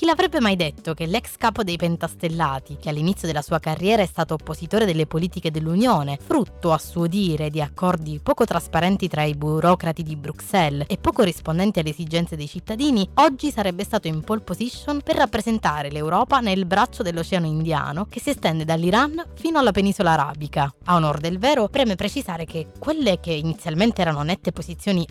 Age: 20-39